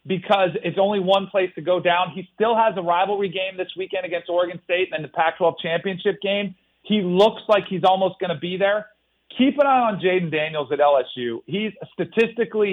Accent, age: American, 40-59